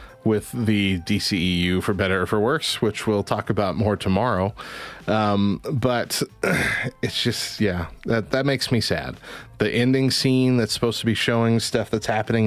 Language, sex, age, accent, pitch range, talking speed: English, male, 30-49, American, 105-135 Hz, 170 wpm